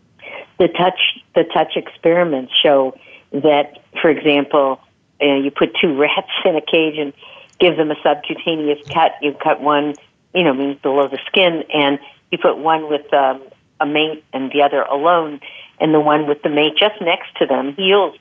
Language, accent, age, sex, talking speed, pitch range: English, American, 50-69, female, 185 wpm, 140-160 Hz